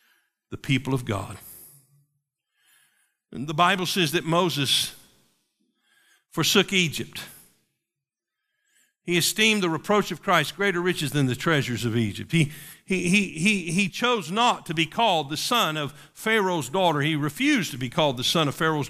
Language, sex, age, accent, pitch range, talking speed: English, male, 50-69, American, 145-200 Hz, 155 wpm